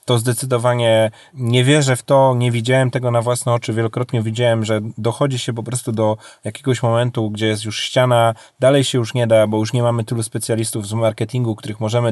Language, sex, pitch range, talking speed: Polish, male, 110-130 Hz, 205 wpm